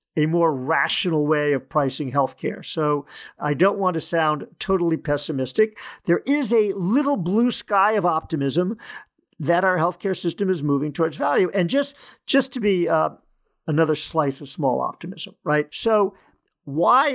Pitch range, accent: 150-200 Hz, American